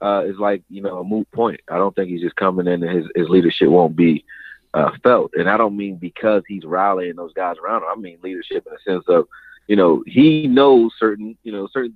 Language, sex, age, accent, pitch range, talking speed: English, male, 30-49, American, 85-130 Hz, 245 wpm